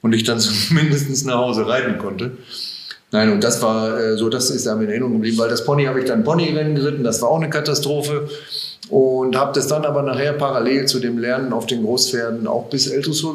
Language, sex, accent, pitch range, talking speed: German, male, German, 115-140 Hz, 220 wpm